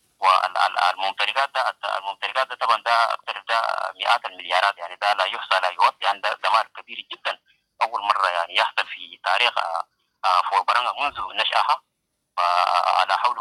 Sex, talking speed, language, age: male, 140 wpm, English, 30-49